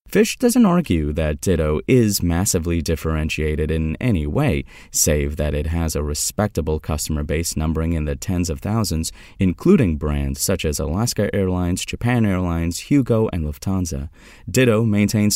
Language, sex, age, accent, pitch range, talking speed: English, male, 30-49, American, 80-115 Hz, 150 wpm